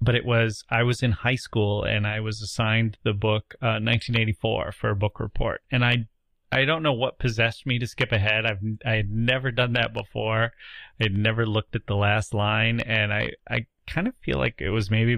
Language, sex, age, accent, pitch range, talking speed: English, male, 30-49, American, 105-120 Hz, 220 wpm